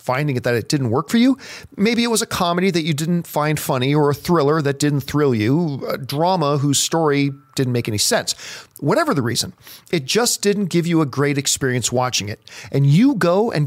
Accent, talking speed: American, 220 wpm